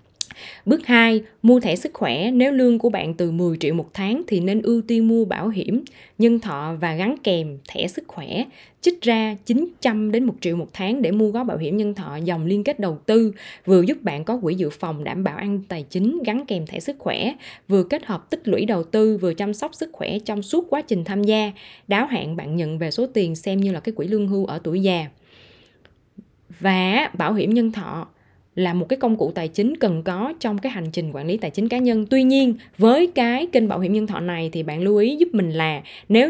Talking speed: 240 wpm